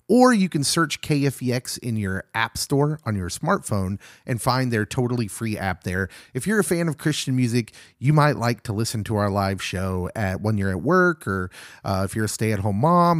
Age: 30-49